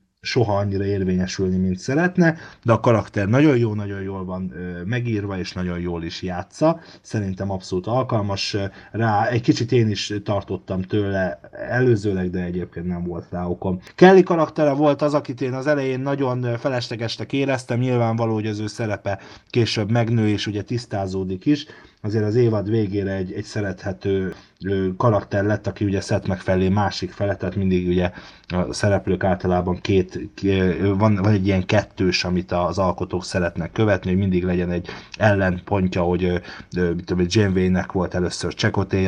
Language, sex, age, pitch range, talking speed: Hungarian, male, 30-49, 95-120 Hz, 155 wpm